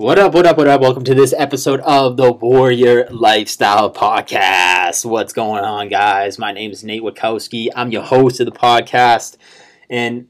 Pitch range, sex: 115-135 Hz, male